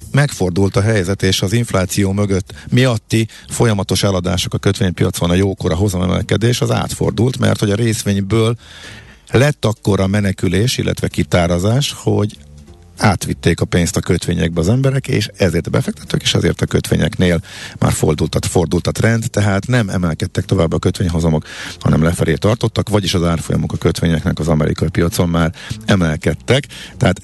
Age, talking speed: 50-69, 145 wpm